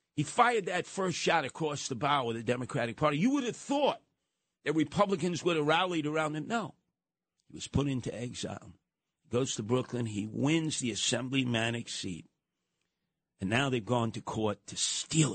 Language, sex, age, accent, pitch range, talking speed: English, male, 50-69, American, 115-155 Hz, 180 wpm